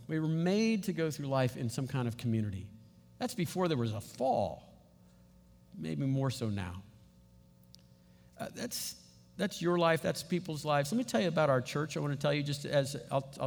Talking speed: 200 wpm